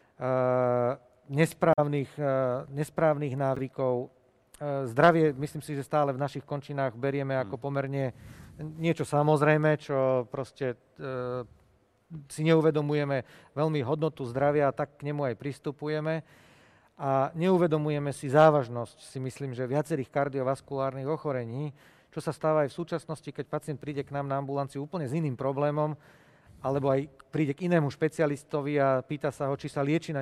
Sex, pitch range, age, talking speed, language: male, 135-160 Hz, 40-59, 135 wpm, Slovak